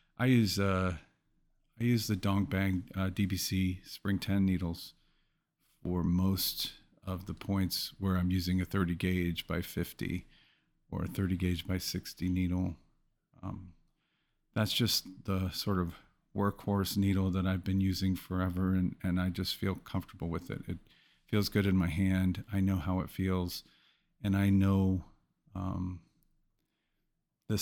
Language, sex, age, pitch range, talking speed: English, male, 40-59, 90-105 Hz, 150 wpm